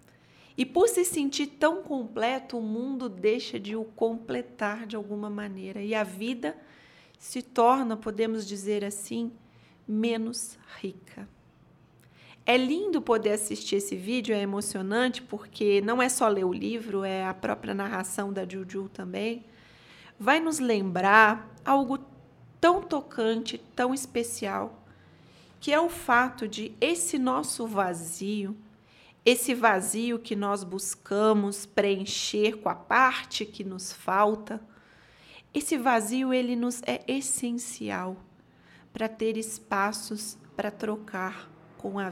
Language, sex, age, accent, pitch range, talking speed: Portuguese, female, 40-59, Brazilian, 200-245 Hz, 125 wpm